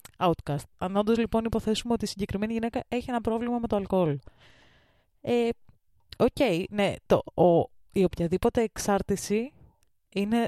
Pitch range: 180-235 Hz